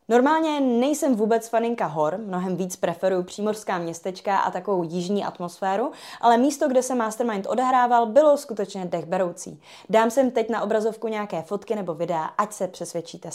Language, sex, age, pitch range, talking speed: Czech, female, 20-39, 185-245 Hz, 160 wpm